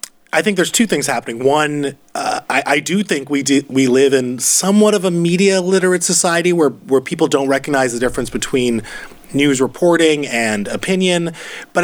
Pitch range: 135-185 Hz